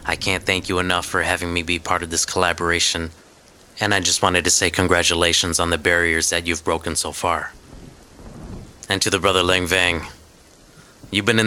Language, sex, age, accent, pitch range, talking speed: English, male, 30-49, American, 85-95 Hz, 190 wpm